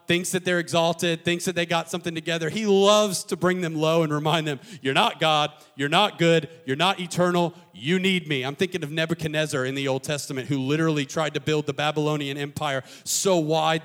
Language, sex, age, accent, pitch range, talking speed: English, male, 40-59, American, 135-165 Hz, 210 wpm